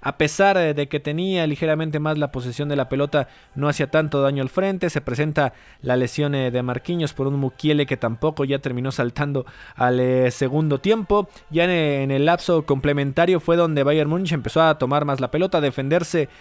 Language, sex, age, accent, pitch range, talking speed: Spanish, male, 20-39, Mexican, 135-170 Hz, 190 wpm